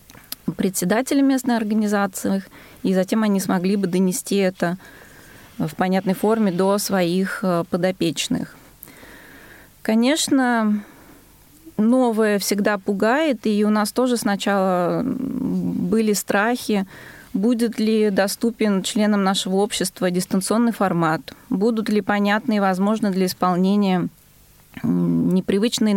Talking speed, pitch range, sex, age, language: 100 wpm, 180-215 Hz, female, 20-39, Russian